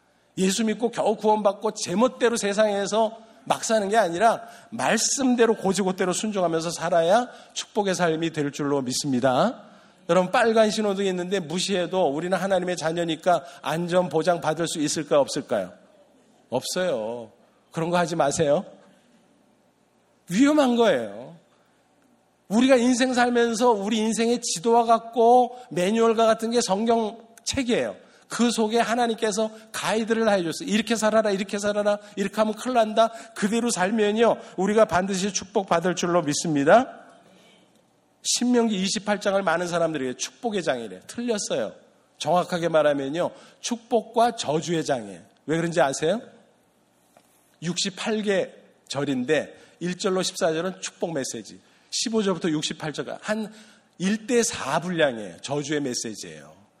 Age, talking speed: 50-69, 110 wpm